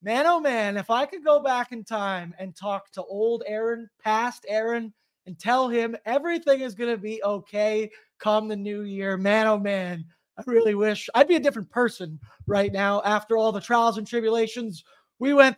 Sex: male